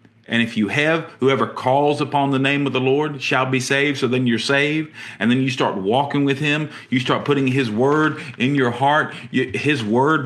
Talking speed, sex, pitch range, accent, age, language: 210 wpm, male, 115-150 Hz, American, 40-59, English